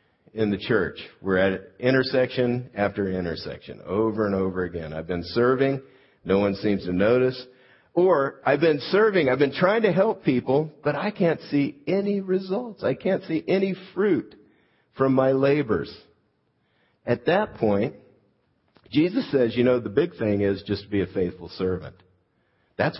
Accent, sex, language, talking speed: American, male, English, 160 wpm